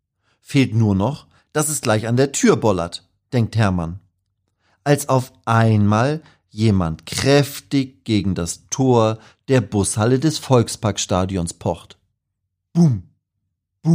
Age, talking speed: 40-59, 115 wpm